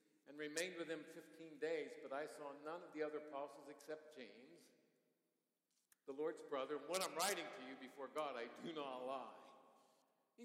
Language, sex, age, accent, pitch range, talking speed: English, male, 60-79, American, 140-210 Hz, 185 wpm